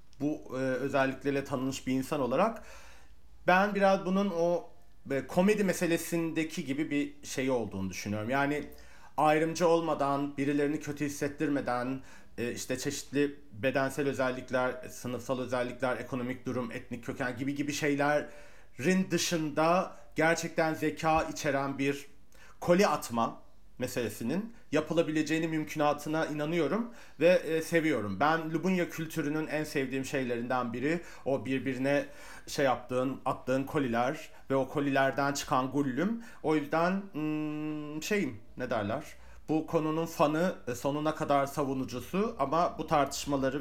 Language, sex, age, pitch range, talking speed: Turkish, male, 40-59, 130-155 Hz, 110 wpm